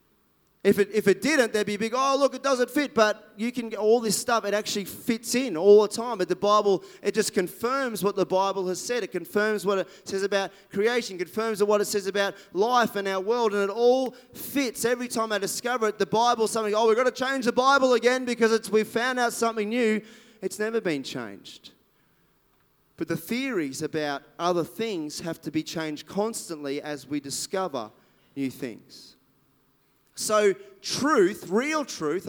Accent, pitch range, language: Australian, 195-245 Hz, English